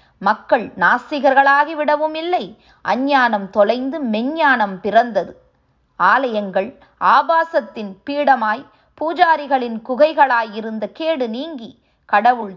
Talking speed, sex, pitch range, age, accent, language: 70 wpm, female, 215-295 Hz, 20-39, native, Tamil